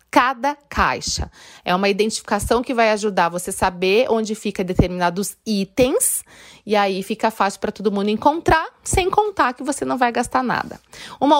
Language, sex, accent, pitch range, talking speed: Portuguese, female, Brazilian, 190-255 Hz, 165 wpm